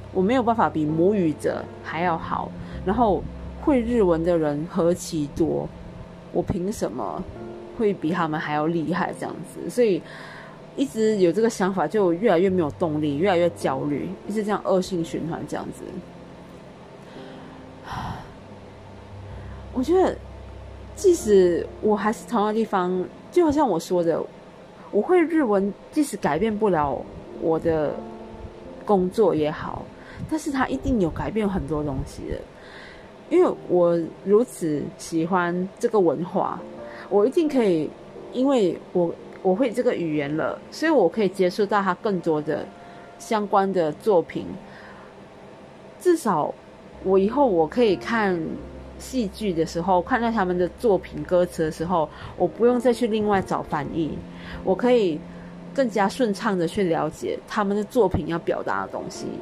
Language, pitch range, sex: Chinese, 160-220 Hz, female